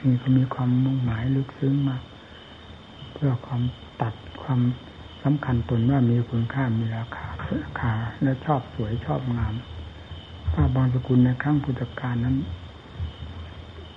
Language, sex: Thai, male